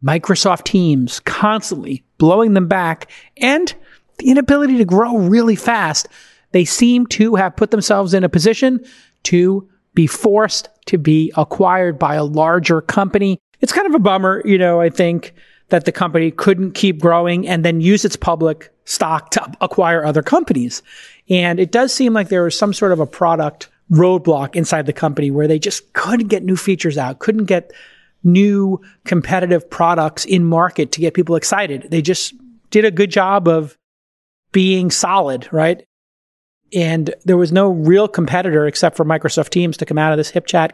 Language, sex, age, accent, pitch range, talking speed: English, male, 30-49, American, 160-200 Hz, 175 wpm